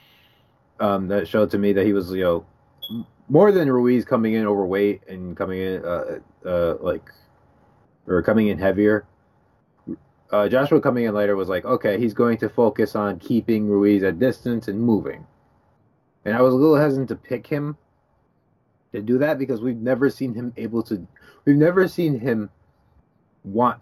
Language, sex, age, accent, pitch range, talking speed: English, male, 30-49, American, 100-135 Hz, 175 wpm